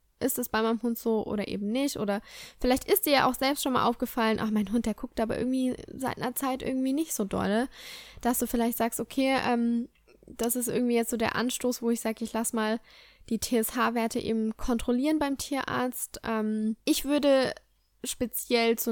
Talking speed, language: 200 wpm, German